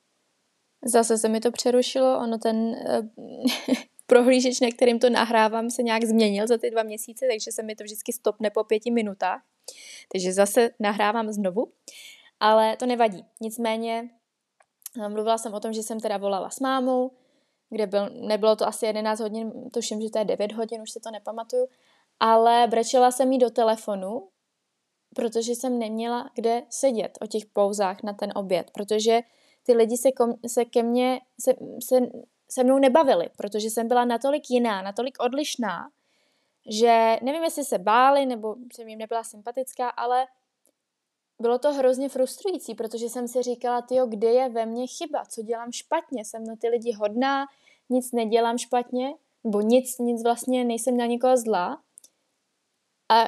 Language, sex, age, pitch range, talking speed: Czech, female, 20-39, 225-255 Hz, 165 wpm